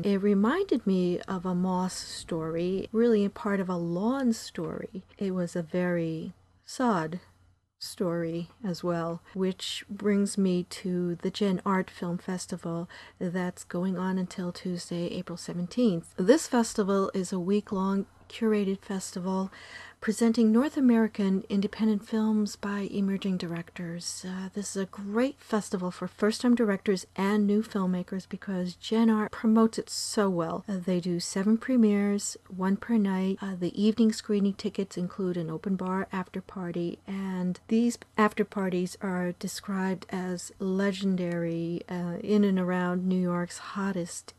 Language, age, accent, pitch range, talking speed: English, 40-59, American, 180-210 Hz, 145 wpm